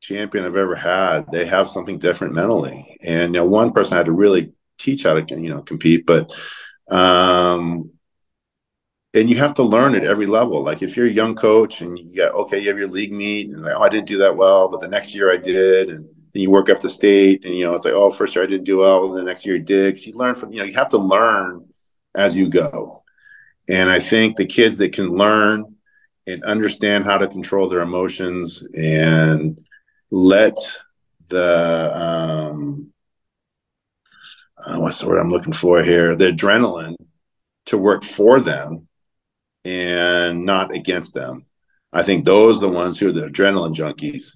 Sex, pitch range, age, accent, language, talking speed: male, 85-105 Hz, 40-59, American, English, 195 wpm